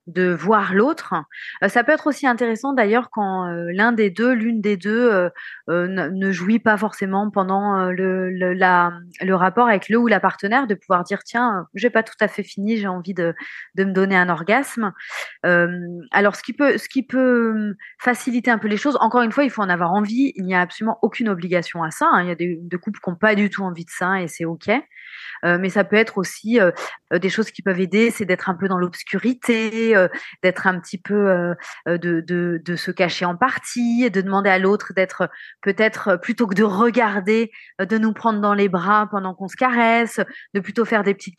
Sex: female